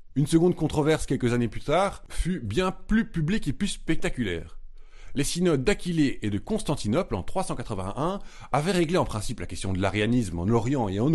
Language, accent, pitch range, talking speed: French, French, 105-155 Hz, 185 wpm